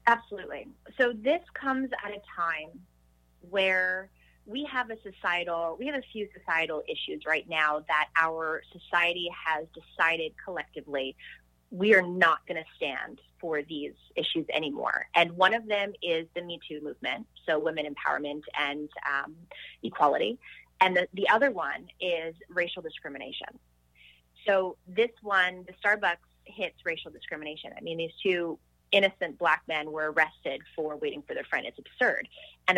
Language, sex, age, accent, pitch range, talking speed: English, female, 20-39, American, 160-205 Hz, 155 wpm